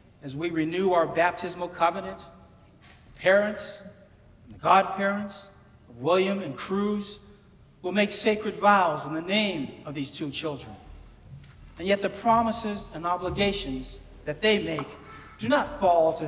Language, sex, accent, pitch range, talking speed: English, male, American, 150-205 Hz, 135 wpm